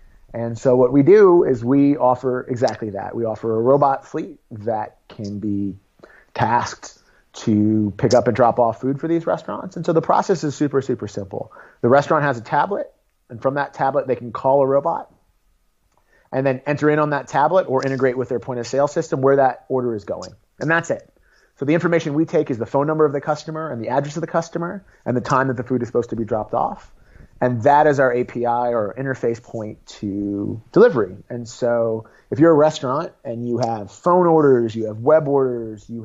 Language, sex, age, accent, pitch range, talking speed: English, male, 30-49, American, 115-140 Hz, 215 wpm